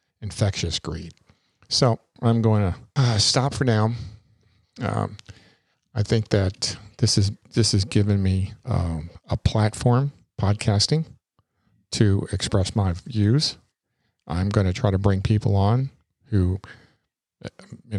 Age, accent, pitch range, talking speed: 50-69, American, 95-120 Hz, 125 wpm